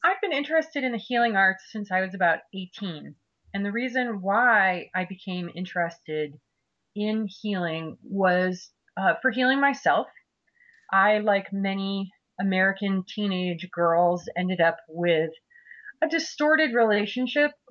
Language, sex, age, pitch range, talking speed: English, female, 30-49, 175-220 Hz, 130 wpm